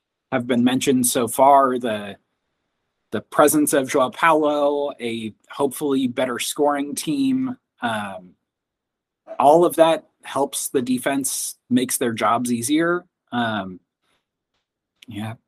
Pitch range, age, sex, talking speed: 125-160 Hz, 30-49, male, 110 wpm